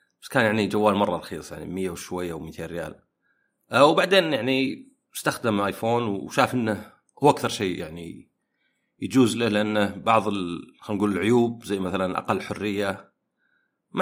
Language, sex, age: Arabic, male, 40-59